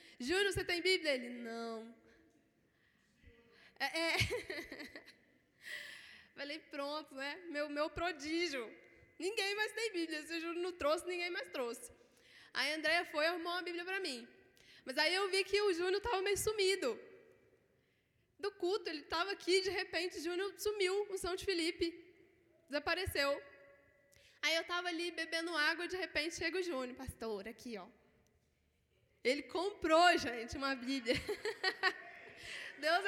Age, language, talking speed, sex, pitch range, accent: 10-29, Gujarati, 145 wpm, female, 300-395 Hz, Brazilian